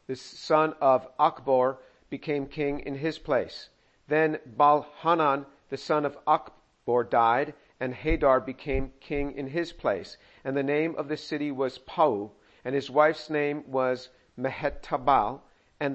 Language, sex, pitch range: English, male, 135-160 Hz